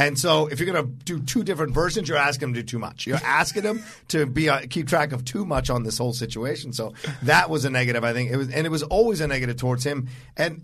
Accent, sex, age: American, male, 40-59